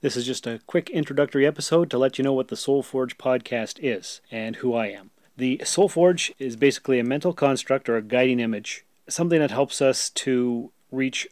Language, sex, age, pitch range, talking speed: English, male, 30-49, 120-155 Hz, 205 wpm